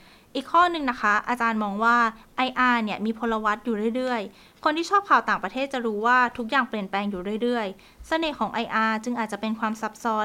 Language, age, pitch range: Thai, 20-39, 205-255 Hz